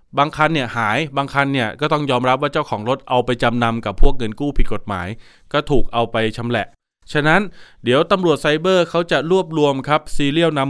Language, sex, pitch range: Thai, male, 115-145 Hz